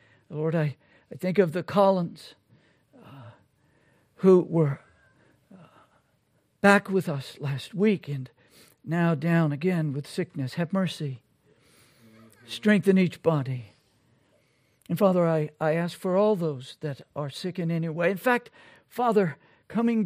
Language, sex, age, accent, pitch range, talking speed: English, male, 60-79, American, 145-195 Hz, 135 wpm